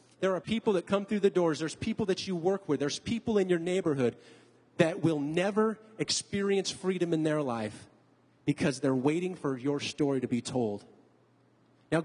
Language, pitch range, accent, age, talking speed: English, 140-185 Hz, American, 20-39, 185 wpm